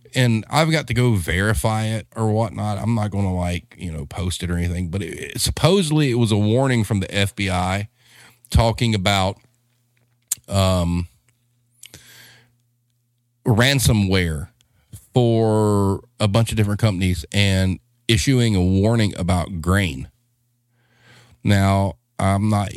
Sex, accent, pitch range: male, American, 90-120 Hz